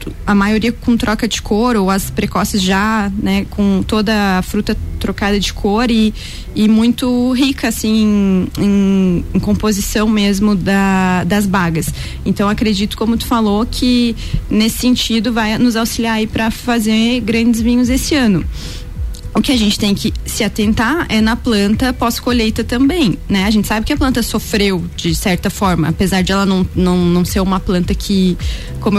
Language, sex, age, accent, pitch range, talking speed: Portuguese, female, 20-39, Brazilian, 195-230 Hz, 170 wpm